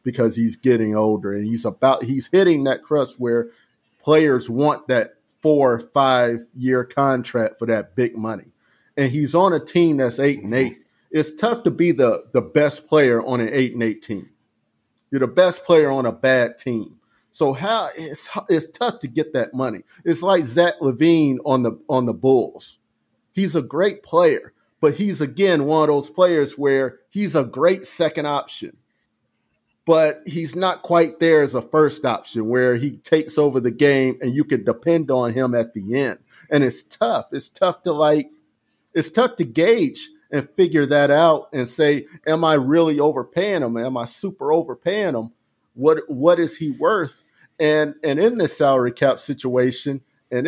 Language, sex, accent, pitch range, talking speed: English, male, American, 125-165 Hz, 185 wpm